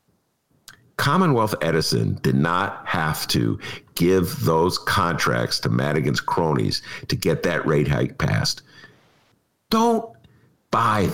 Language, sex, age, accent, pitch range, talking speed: English, male, 50-69, American, 145-220 Hz, 110 wpm